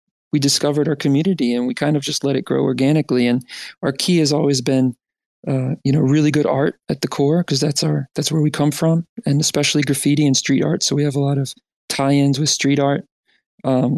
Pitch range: 130-145 Hz